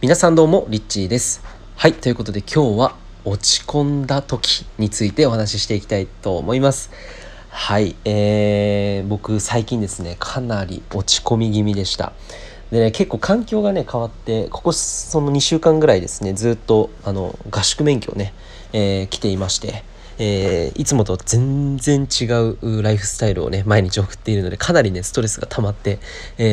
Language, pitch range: Japanese, 100-125 Hz